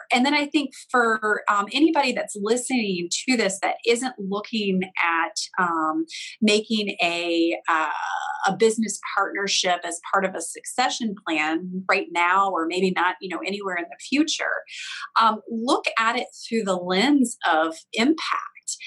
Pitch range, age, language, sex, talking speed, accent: 185-235 Hz, 30-49, English, female, 155 wpm, American